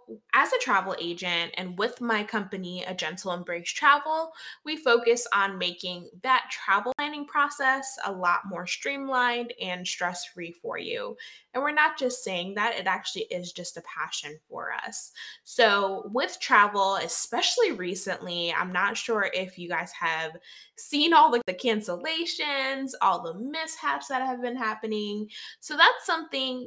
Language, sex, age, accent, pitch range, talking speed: English, female, 20-39, American, 180-260 Hz, 155 wpm